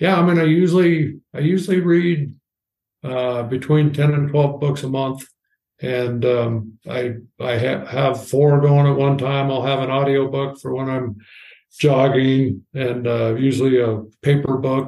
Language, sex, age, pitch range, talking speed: English, male, 60-79, 125-150 Hz, 170 wpm